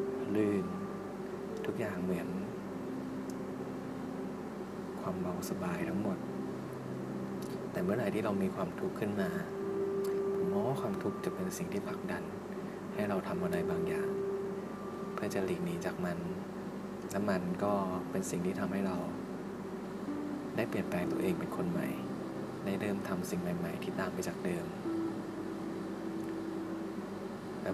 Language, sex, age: Thai, male, 20-39